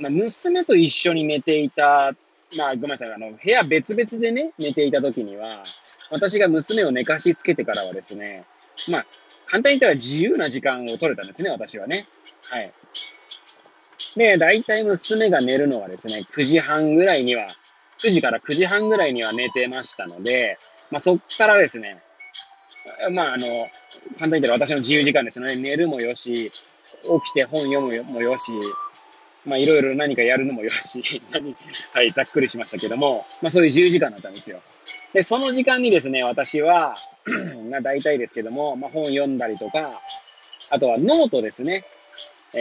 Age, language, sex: 20-39, Japanese, male